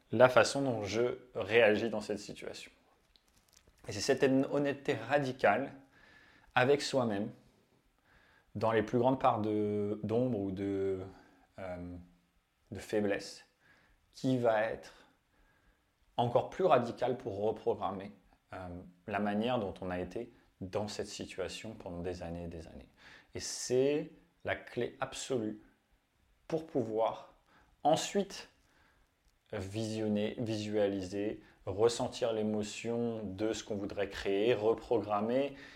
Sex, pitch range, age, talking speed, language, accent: male, 95-125 Hz, 30-49, 115 wpm, French, French